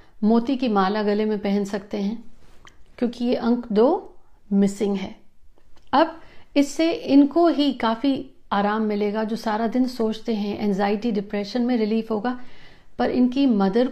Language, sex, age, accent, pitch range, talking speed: Hindi, female, 50-69, native, 215-250 Hz, 145 wpm